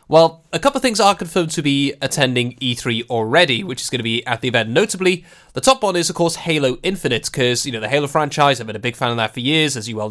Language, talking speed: English, 280 wpm